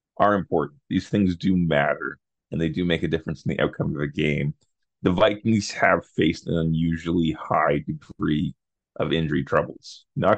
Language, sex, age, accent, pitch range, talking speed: English, male, 30-49, American, 80-105 Hz, 175 wpm